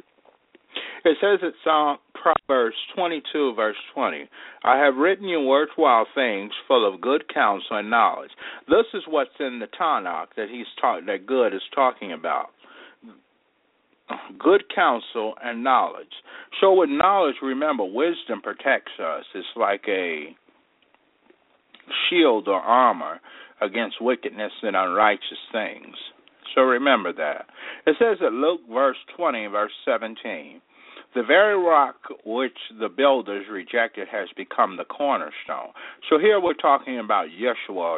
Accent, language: American, English